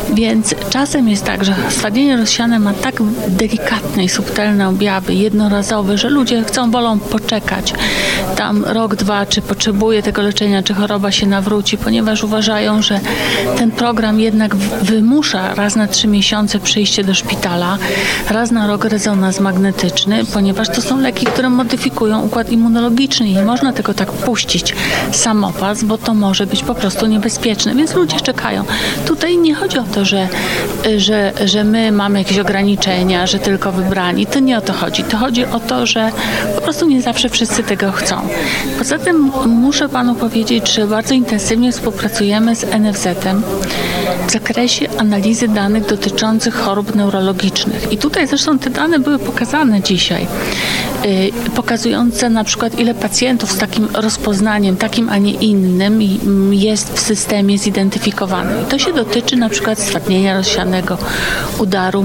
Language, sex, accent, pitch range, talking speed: Polish, female, native, 200-235 Hz, 150 wpm